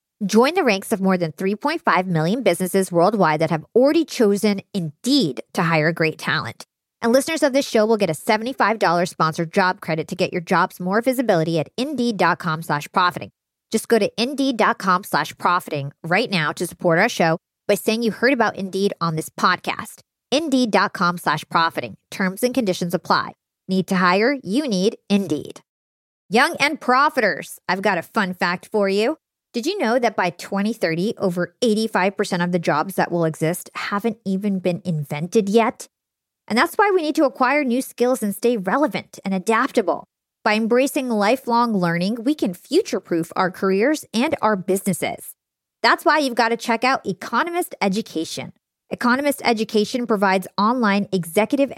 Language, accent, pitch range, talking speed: English, American, 180-240 Hz, 165 wpm